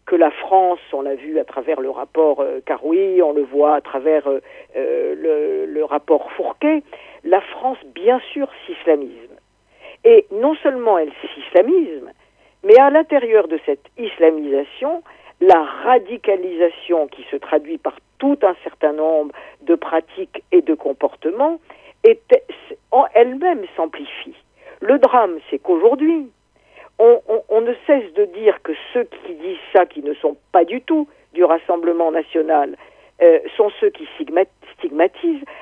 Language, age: French, 50-69